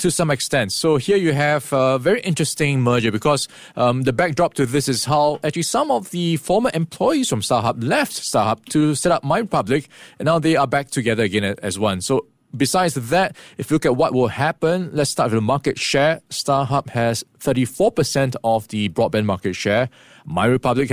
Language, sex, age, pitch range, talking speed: English, male, 20-39, 115-155 Hz, 200 wpm